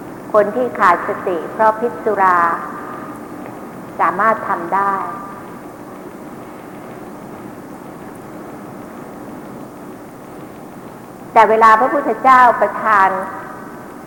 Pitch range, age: 195-240 Hz, 60-79